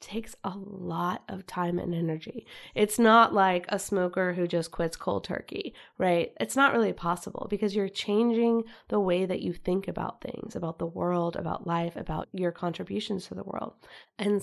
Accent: American